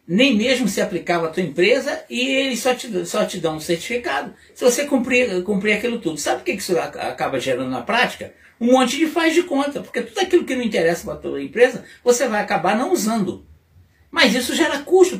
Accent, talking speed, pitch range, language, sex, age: Brazilian, 215 wpm, 170-255 Hz, Portuguese, male, 60-79